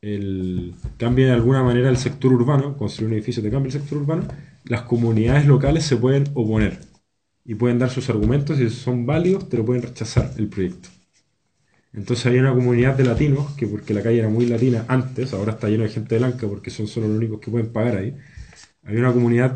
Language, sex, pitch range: Spanish, male, 115-140 Hz